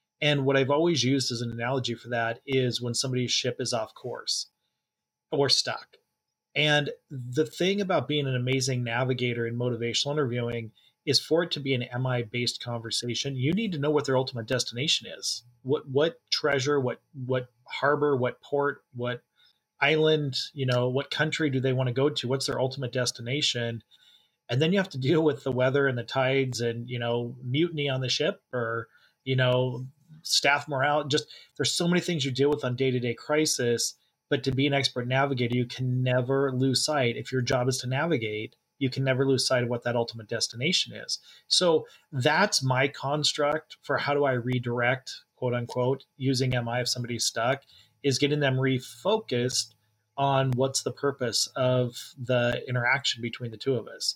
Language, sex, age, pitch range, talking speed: English, male, 30-49, 120-145 Hz, 185 wpm